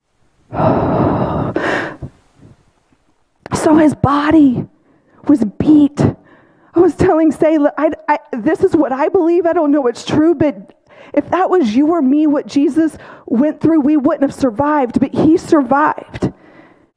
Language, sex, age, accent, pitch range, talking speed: English, female, 40-59, American, 285-350 Hz, 140 wpm